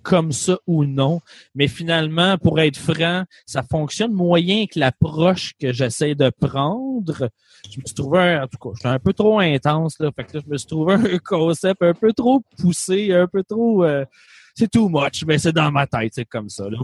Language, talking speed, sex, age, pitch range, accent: French, 215 wpm, male, 30-49, 130-175 Hz, Canadian